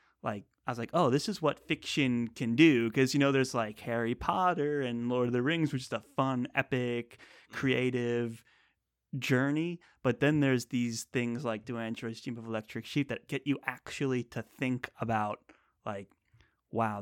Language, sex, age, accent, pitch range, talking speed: English, male, 30-49, American, 110-130 Hz, 180 wpm